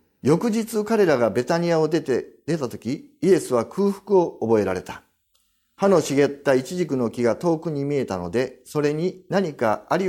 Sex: male